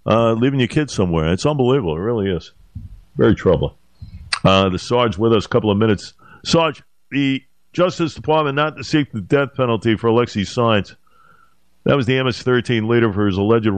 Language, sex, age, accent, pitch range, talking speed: English, male, 50-69, American, 95-125 Hz, 185 wpm